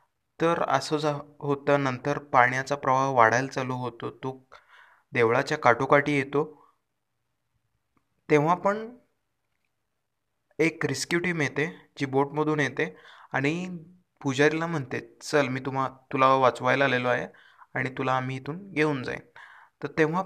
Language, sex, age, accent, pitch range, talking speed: Marathi, male, 20-39, native, 135-160 Hz, 120 wpm